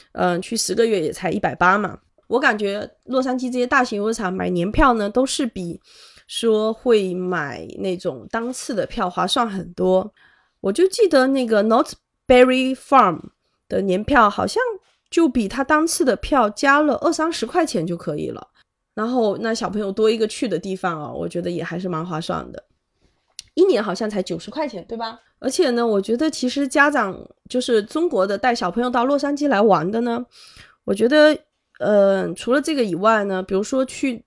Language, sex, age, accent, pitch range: Chinese, female, 20-39, native, 195-270 Hz